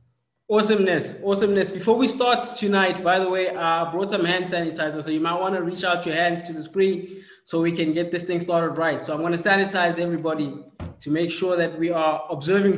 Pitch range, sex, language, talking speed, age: 165-200 Hz, male, English, 220 wpm, 20-39